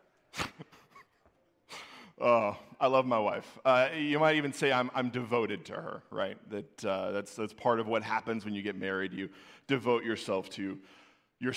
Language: English